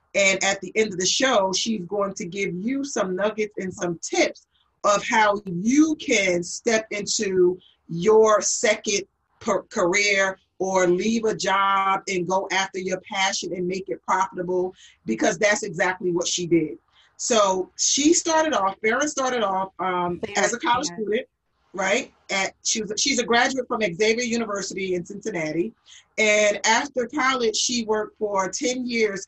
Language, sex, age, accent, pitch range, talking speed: English, female, 30-49, American, 185-230 Hz, 160 wpm